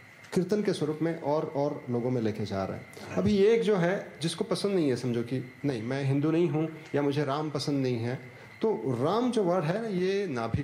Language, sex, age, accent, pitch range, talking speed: Hindi, male, 30-49, native, 125-180 Hz, 235 wpm